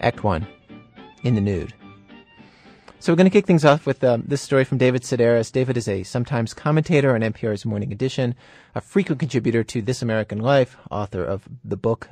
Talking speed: 195 wpm